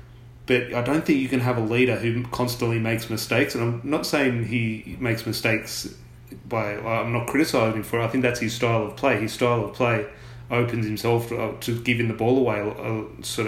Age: 30-49